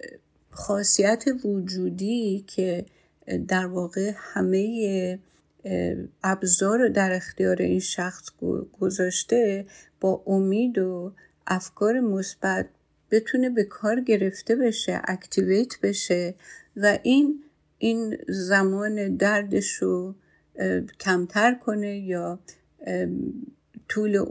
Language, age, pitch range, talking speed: Persian, 50-69, 180-205 Hz, 80 wpm